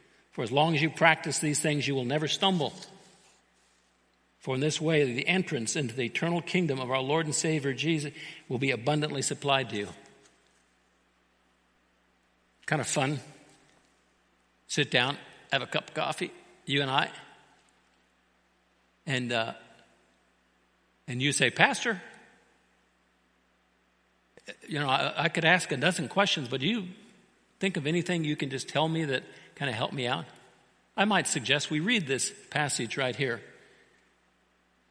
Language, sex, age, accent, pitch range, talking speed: English, male, 60-79, American, 100-165 Hz, 150 wpm